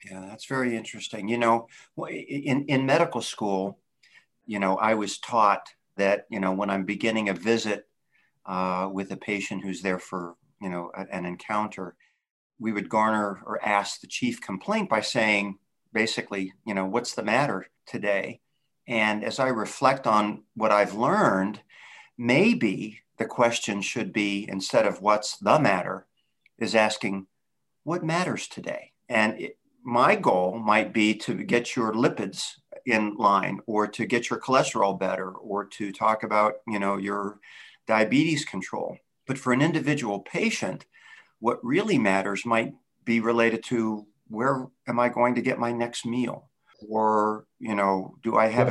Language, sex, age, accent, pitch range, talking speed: English, male, 50-69, American, 100-115 Hz, 160 wpm